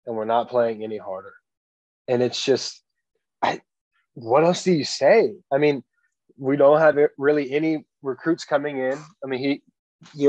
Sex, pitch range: male, 125-165 Hz